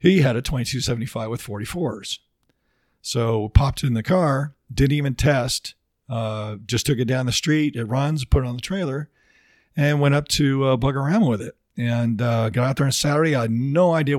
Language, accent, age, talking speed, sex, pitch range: English, American, 50-69, 205 wpm, male, 120-150 Hz